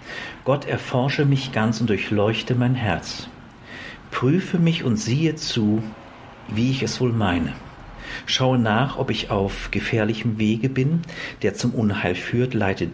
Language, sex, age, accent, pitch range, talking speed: German, male, 50-69, German, 105-130 Hz, 145 wpm